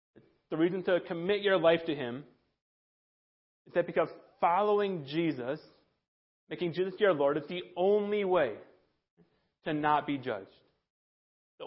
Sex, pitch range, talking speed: male, 145-185 Hz, 135 wpm